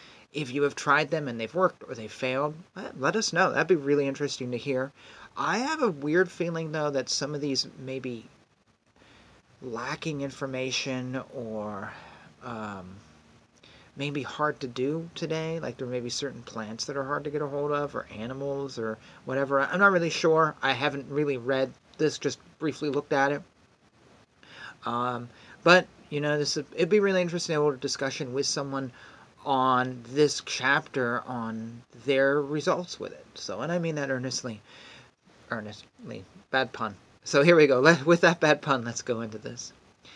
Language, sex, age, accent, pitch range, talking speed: English, male, 40-59, American, 125-160 Hz, 180 wpm